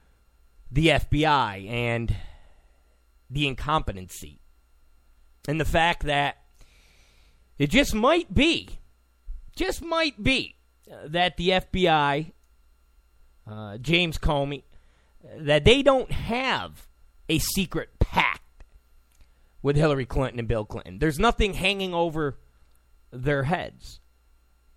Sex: male